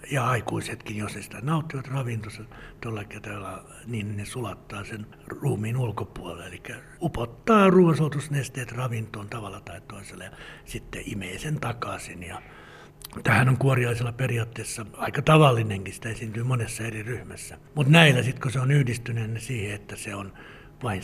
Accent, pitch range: native, 105-135 Hz